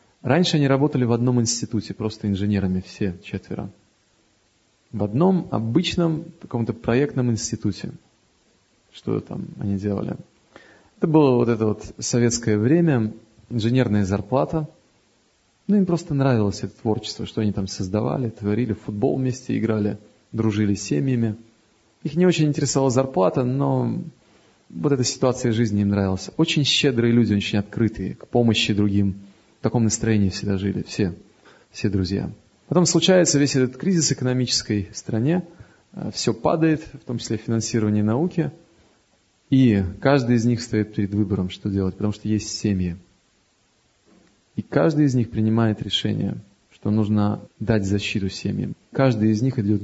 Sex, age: male, 30-49